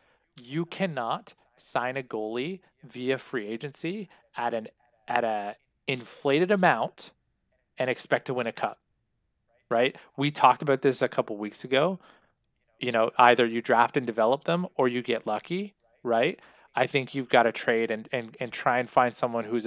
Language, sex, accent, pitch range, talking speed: English, male, American, 115-135 Hz, 170 wpm